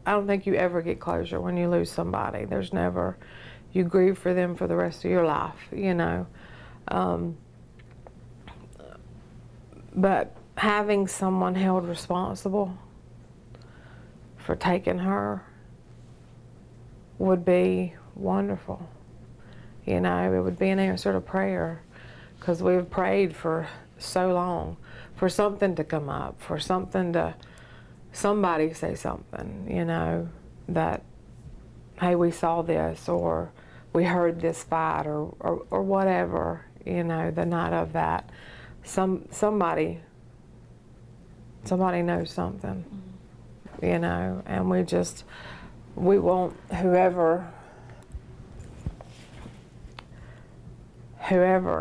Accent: American